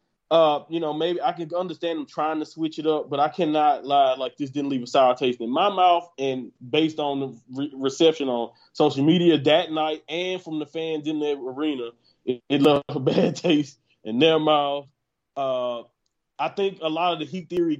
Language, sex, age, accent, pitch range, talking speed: English, male, 20-39, American, 140-170 Hz, 210 wpm